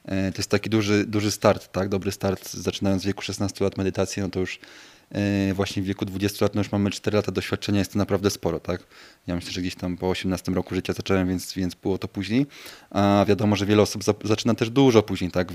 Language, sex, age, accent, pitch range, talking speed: Polish, male, 20-39, native, 95-105 Hz, 230 wpm